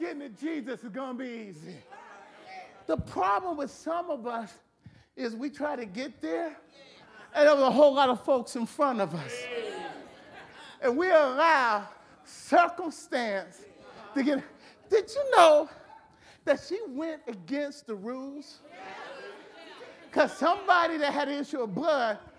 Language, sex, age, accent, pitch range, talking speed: English, male, 40-59, American, 260-350 Hz, 145 wpm